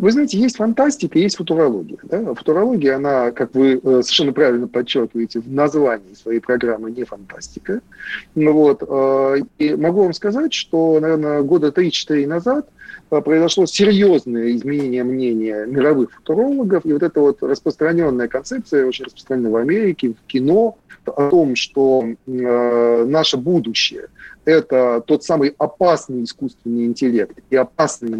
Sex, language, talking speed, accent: male, Russian, 130 wpm, native